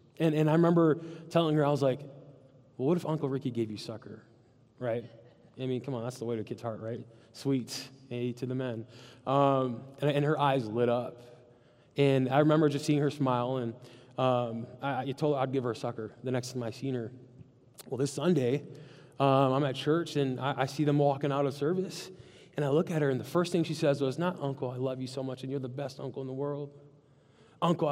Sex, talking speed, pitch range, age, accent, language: male, 235 wpm, 130-165 Hz, 20-39, American, English